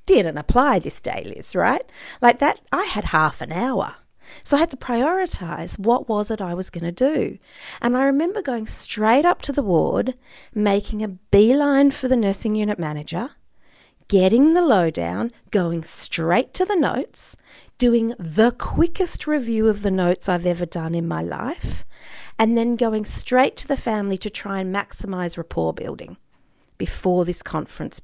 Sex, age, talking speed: female, 40-59, 170 wpm